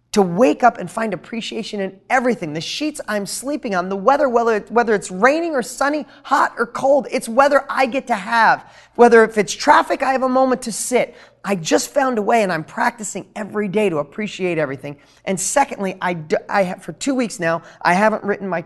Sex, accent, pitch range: male, American, 175-220 Hz